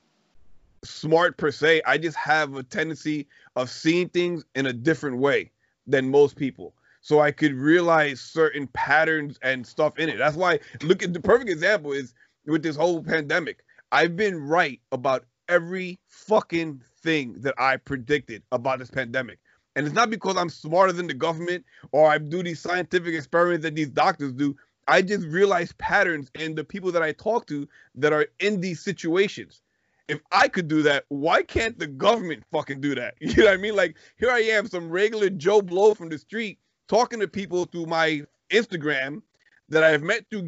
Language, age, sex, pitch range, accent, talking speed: English, 30-49, male, 150-205 Hz, American, 185 wpm